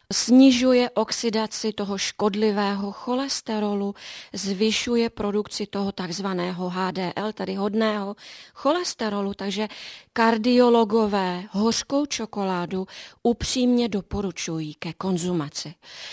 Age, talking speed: 30-49, 80 wpm